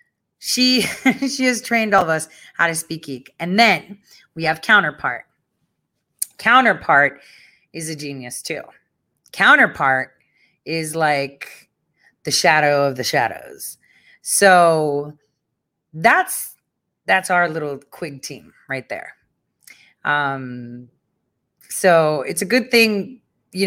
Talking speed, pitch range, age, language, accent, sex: 115 wpm, 145-190 Hz, 30-49, English, American, female